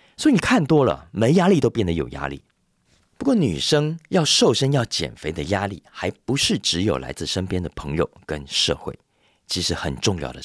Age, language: 40-59, Chinese